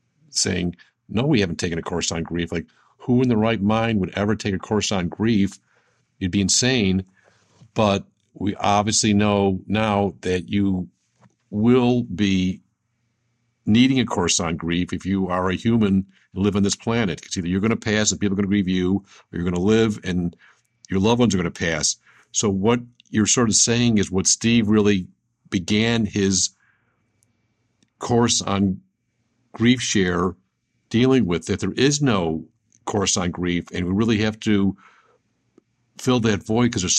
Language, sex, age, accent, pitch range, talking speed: English, male, 50-69, American, 95-120 Hz, 180 wpm